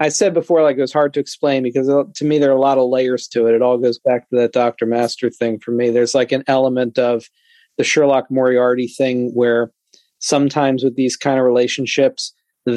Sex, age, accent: male, 40-59, American